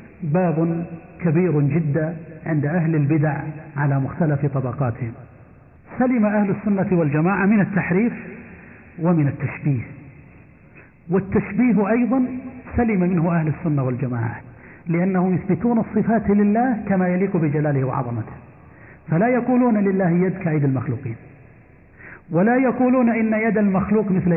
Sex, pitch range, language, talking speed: male, 150-200 Hz, Arabic, 110 wpm